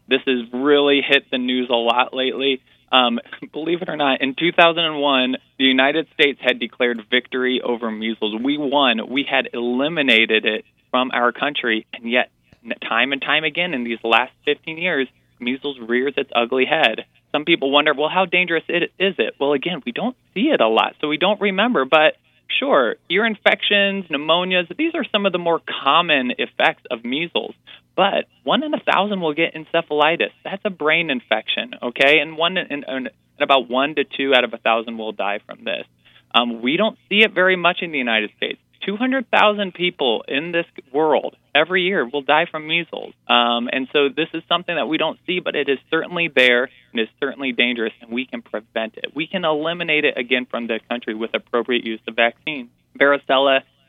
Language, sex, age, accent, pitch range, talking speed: English, male, 20-39, American, 120-170 Hz, 195 wpm